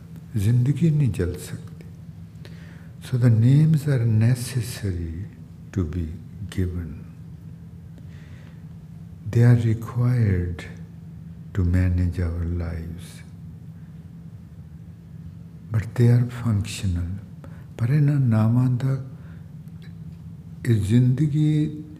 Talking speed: 75 wpm